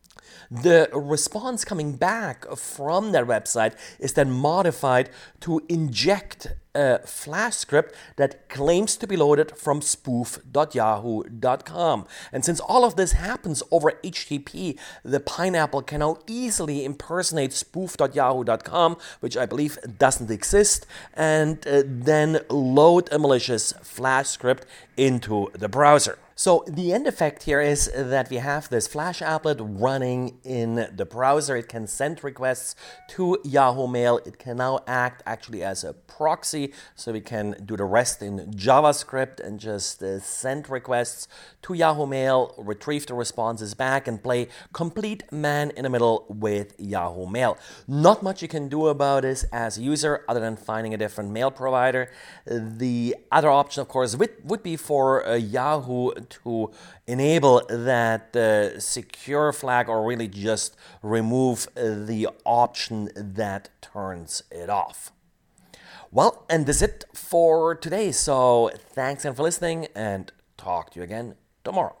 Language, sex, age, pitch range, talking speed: English, male, 40-59, 115-155 Hz, 140 wpm